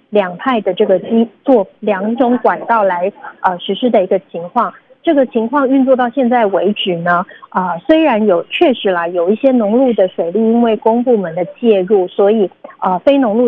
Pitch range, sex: 195-250 Hz, female